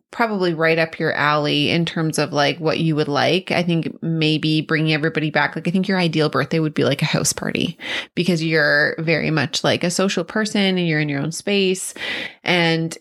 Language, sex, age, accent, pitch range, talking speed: English, female, 30-49, American, 155-200 Hz, 210 wpm